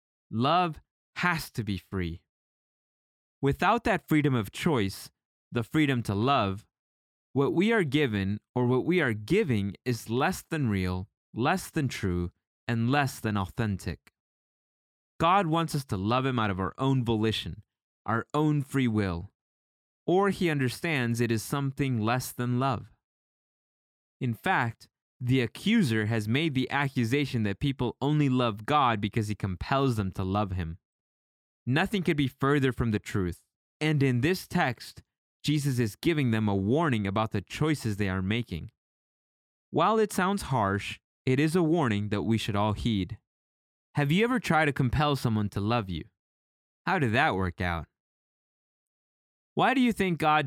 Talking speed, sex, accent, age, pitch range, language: 160 wpm, male, American, 20-39, 95-145 Hz, English